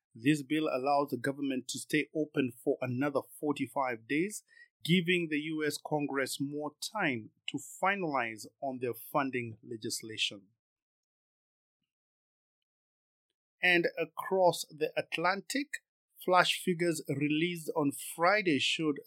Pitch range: 135-170 Hz